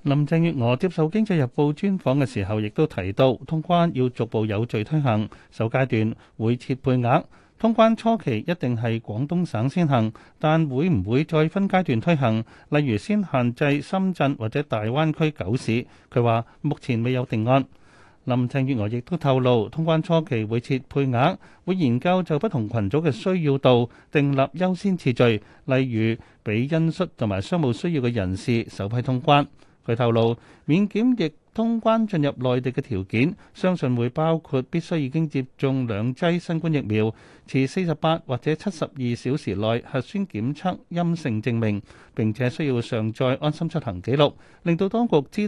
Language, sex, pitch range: Chinese, male, 115-160 Hz